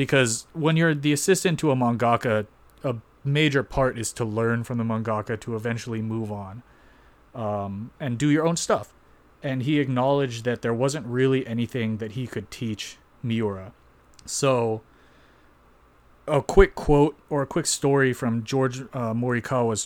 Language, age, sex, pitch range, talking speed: English, 30-49, male, 110-135 Hz, 155 wpm